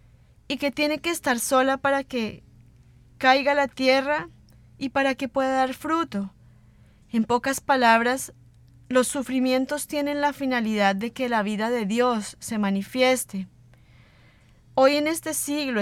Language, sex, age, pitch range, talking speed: Spanish, female, 20-39, 200-265 Hz, 140 wpm